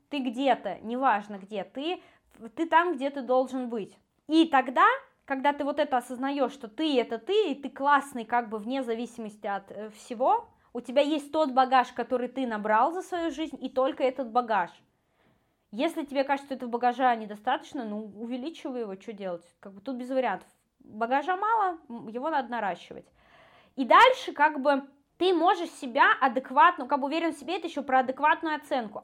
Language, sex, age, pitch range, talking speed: Russian, female, 20-39, 240-300 Hz, 180 wpm